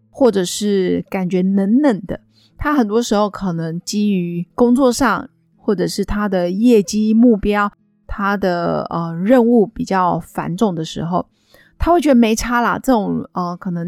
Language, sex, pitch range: Chinese, female, 185-235 Hz